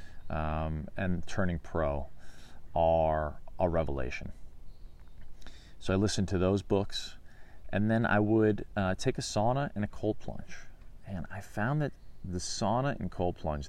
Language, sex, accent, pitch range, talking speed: English, male, American, 80-95 Hz, 150 wpm